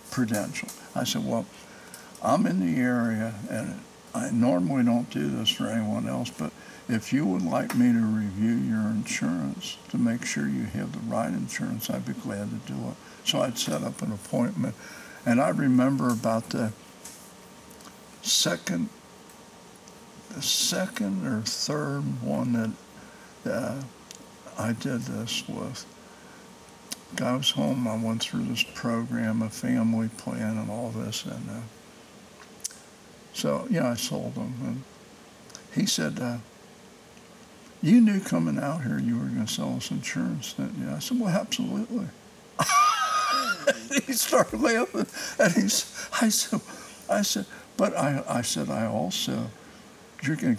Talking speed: 150 wpm